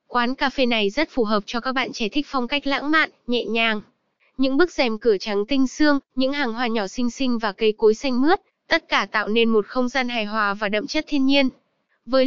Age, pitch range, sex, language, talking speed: 20-39, 225-275 Hz, female, Vietnamese, 250 wpm